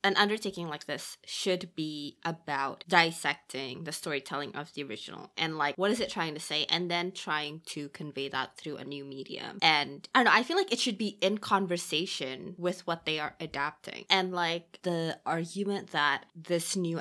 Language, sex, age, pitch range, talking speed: English, female, 20-39, 160-195 Hz, 195 wpm